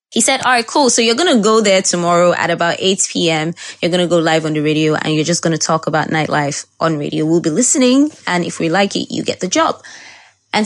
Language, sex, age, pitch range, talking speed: English, female, 20-39, 170-205 Hz, 265 wpm